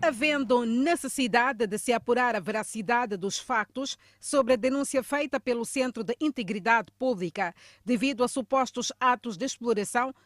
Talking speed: 140 wpm